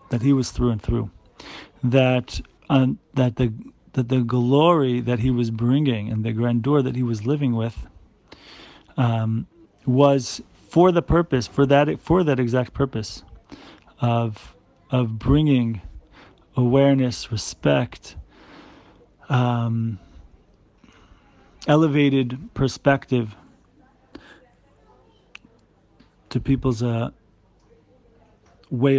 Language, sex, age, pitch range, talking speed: English, male, 40-59, 115-135 Hz, 100 wpm